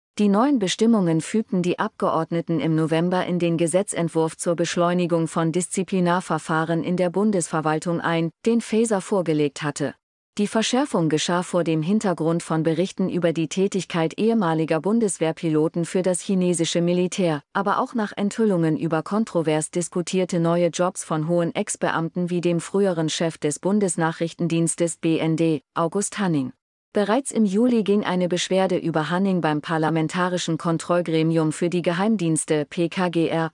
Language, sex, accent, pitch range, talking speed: German, female, German, 160-190 Hz, 135 wpm